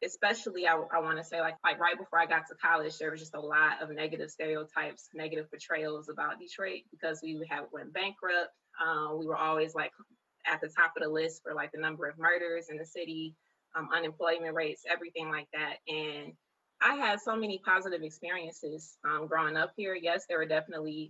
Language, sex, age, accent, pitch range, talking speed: English, female, 20-39, American, 155-175 Hz, 205 wpm